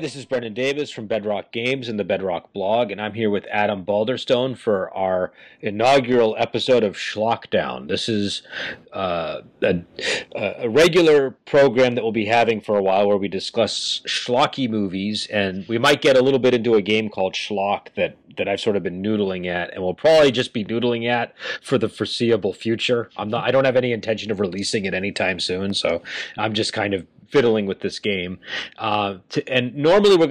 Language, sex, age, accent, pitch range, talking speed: English, male, 30-49, American, 100-130 Hz, 195 wpm